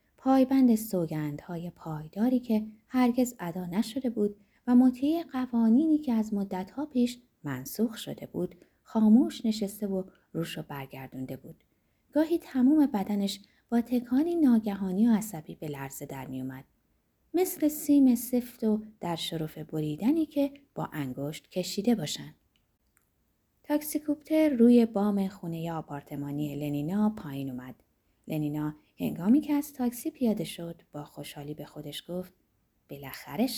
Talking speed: 130 wpm